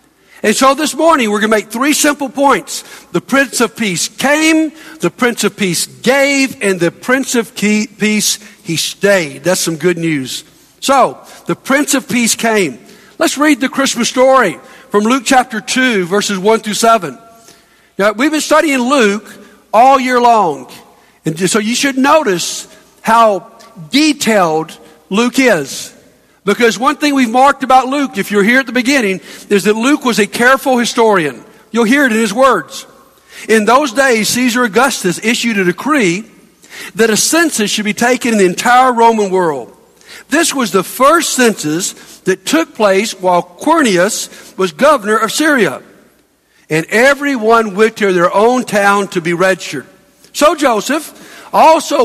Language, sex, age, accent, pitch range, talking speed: English, male, 60-79, American, 200-270 Hz, 160 wpm